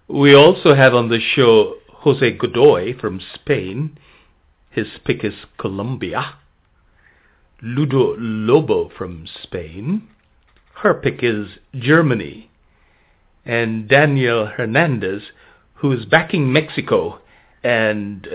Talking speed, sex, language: 100 wpm, male, English